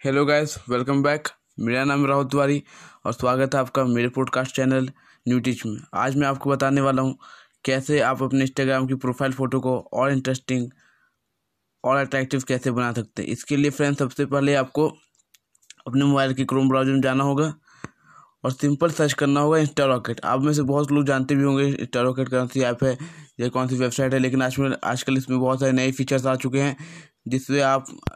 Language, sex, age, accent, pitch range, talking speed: Hindi, male, 20-39, native, 130-145 Hz, 185 wpm